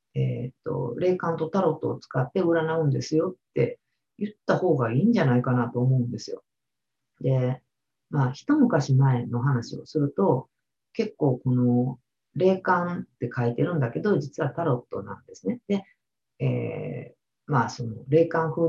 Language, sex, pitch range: Japanese, female, 125-190 Hz